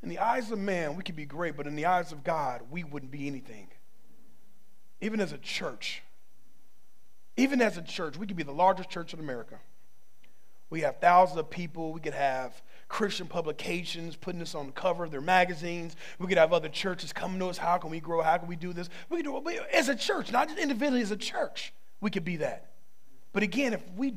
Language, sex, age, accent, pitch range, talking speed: English, male, 40-59, American, 175-245 Hz, 225 wpm